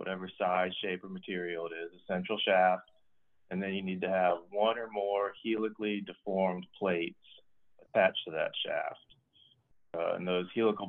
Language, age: English, 30-49